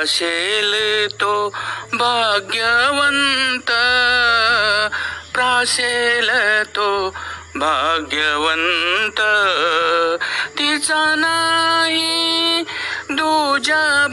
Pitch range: 210-285 Hz